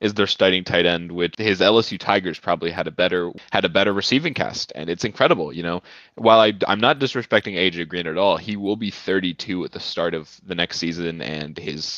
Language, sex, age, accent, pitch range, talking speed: English, male, 20-39, American, 85-110 Hz, 225 wpm